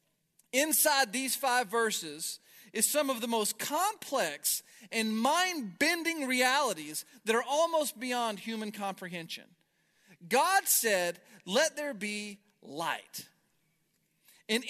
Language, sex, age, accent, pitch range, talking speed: English, male, 40-59, American, 180-270 Hz, 105 wpm